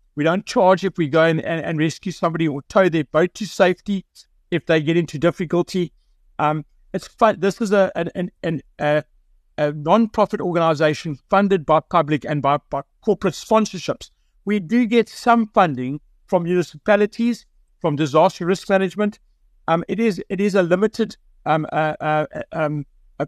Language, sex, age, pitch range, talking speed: English, male, 60-79, 155-205 Hz, 160 wpm